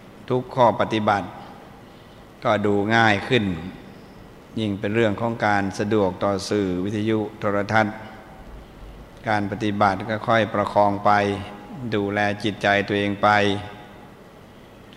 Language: Thai